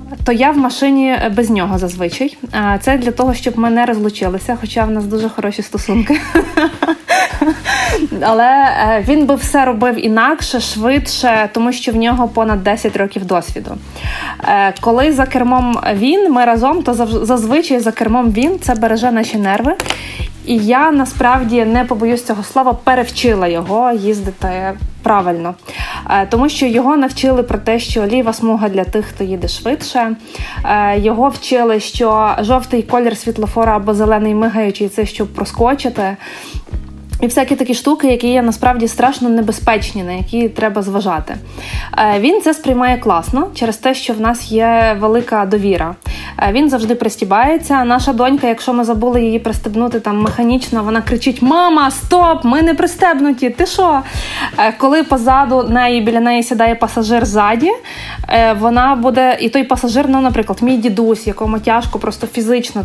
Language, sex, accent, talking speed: Ukrainian, female, native, 145 wpm